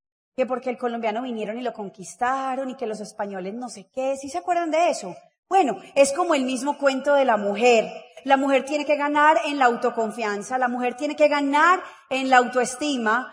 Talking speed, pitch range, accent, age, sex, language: 205 wpm, 245-310 Hz, Colombian, 30-49, female, Spanish